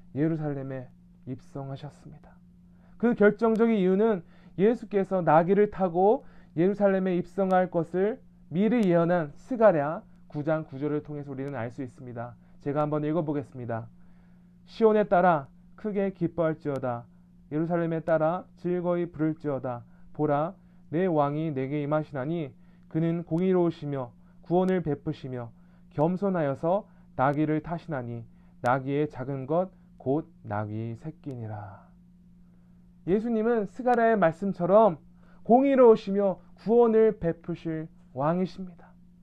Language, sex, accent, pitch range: Korean, male, native, 160-195 Hz